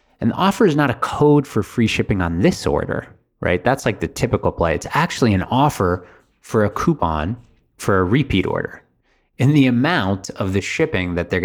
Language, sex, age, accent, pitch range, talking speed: English, male, 30-49, American, 90-120 Hz, 200 wpm